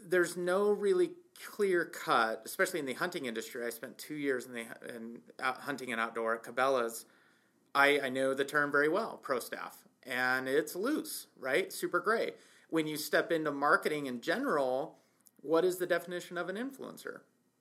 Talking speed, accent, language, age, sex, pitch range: 175 wpm, American, English, 30-49, male, 120-175 Hz